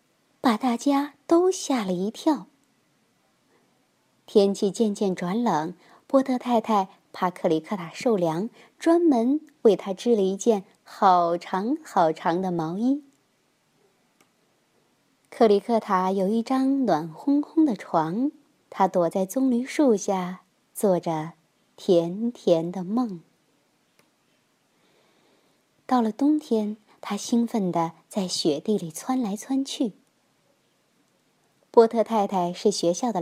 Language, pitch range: Chinese, 185-275 Hz